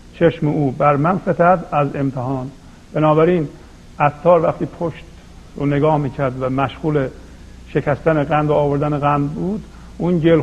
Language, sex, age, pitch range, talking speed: Persian, male, 50-69, 125-150 Hz, 125 wpm